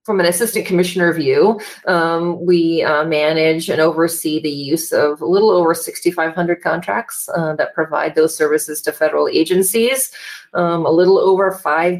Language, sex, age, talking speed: English, female, 40-59, 160 wpm